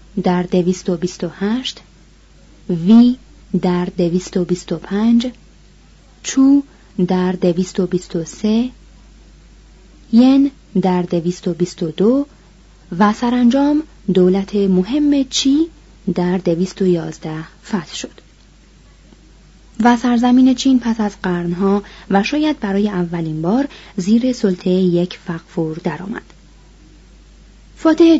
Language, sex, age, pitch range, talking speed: Persian, female, 30-49, 180-245 Hz, 85 wpm